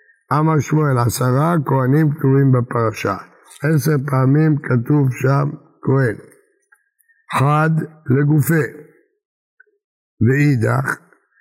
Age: 60-79